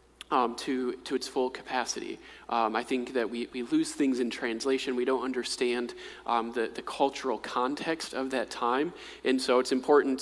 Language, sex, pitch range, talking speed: English, male, 125-160 Hz, 180 wpm